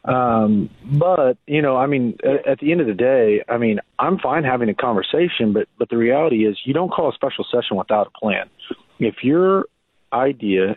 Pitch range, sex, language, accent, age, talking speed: 105-130 Hz, male, English, American, 40-59, 205 wpm